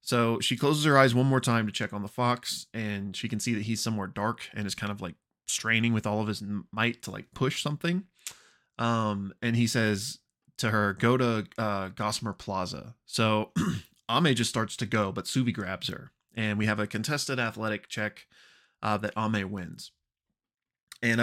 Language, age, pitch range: English, 20-39, 105-120 Hz